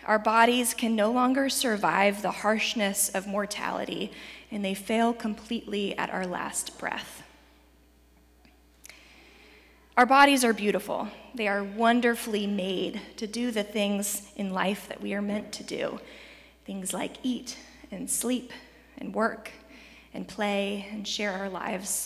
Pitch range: 195-235 Hz